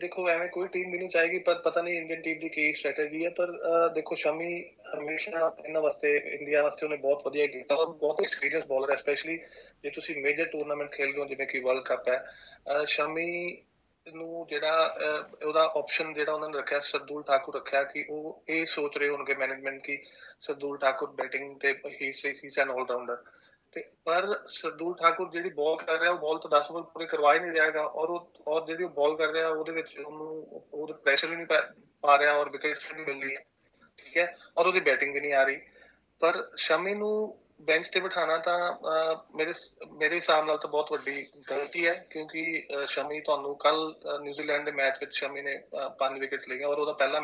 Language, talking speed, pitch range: Punjabi, 180 wpm, 145-165 Hz